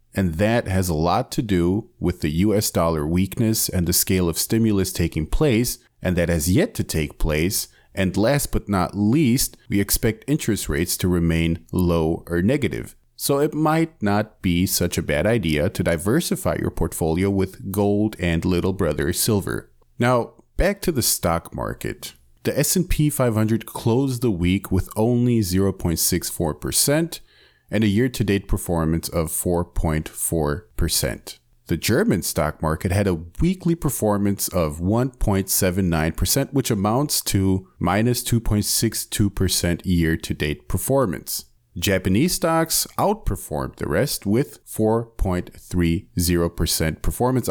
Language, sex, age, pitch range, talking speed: English, male, 40-59, 85-115 Hz, 135 wpm